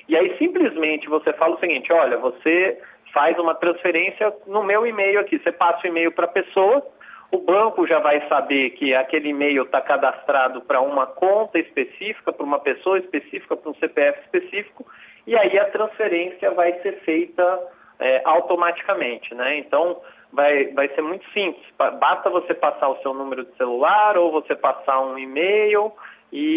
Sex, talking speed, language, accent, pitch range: male, 165 wpm, Portuguese, Brazilian, 135-195 Hz